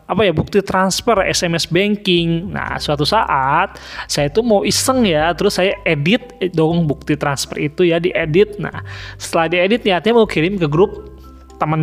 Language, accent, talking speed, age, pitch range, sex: Indonesian, native, 170 wpm, 20-39, 155-220 Hz, male